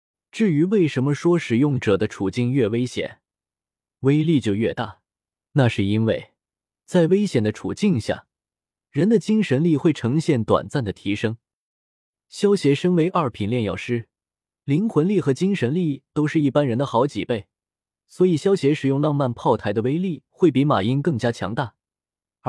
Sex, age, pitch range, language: male, 20-39, 115-165 Hz, Chinese